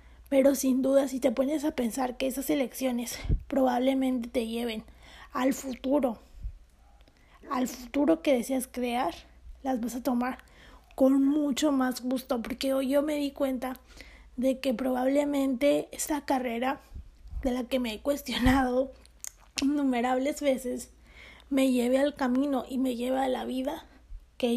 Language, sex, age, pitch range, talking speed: Spanish, female, 30-49, 245-275 Hz, 145 wpm